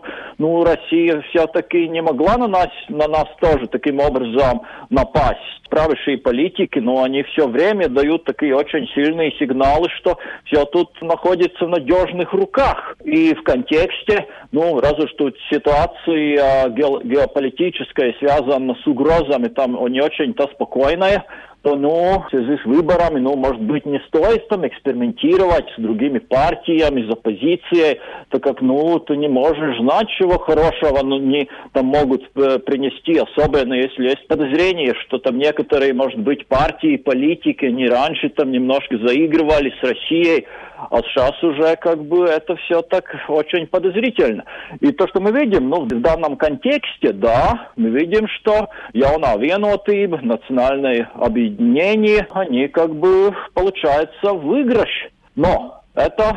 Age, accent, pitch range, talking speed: 50-69, native, 140-185 Hz, 140 wpm